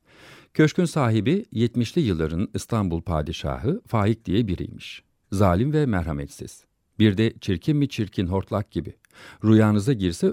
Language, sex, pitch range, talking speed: Turkish, male, 90-130 Hz, 120 wpm